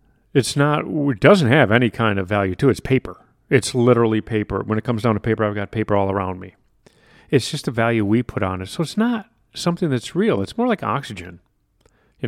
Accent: American